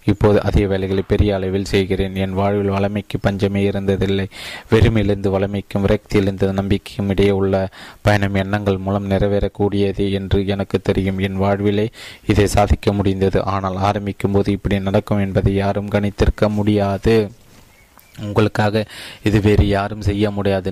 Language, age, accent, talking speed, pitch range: Tamil, 20-39, native, 125 wpm, 100-105 Hz